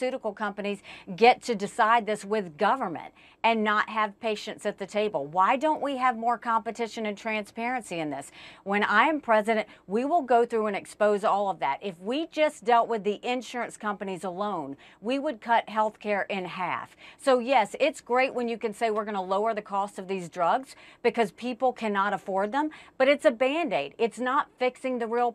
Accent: American